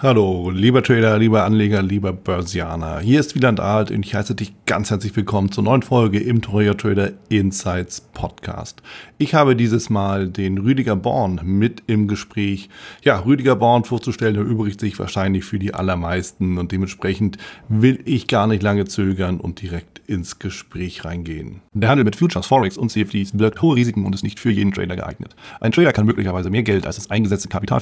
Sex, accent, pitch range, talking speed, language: male, German, 95-115 Hz, 185 wpm, German